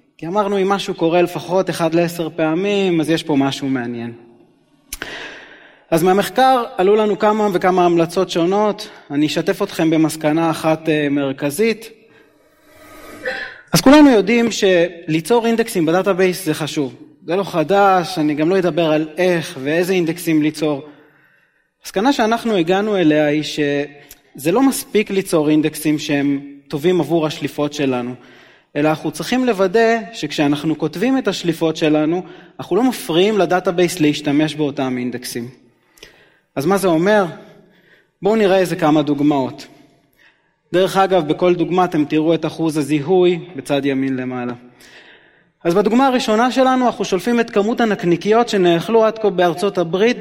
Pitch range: 150-200 Hz